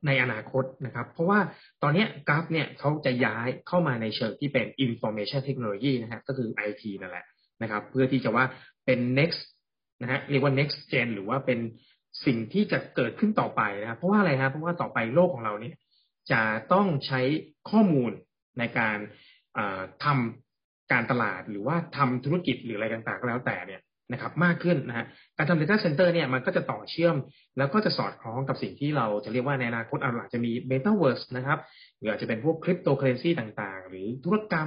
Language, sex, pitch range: Thai, male, 115-155 Hz